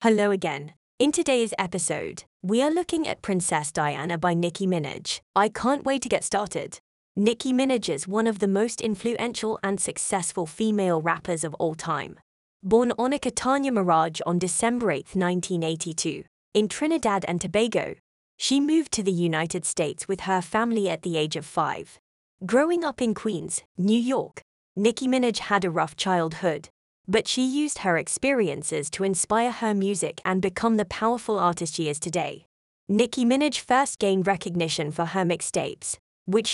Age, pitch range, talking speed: 20-39, 175-230 Hz, 165 wpm